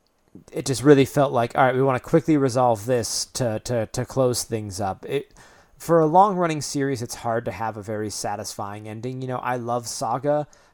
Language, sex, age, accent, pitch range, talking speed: English, male, 20-39, American, 110-135 Hz, 210 wpm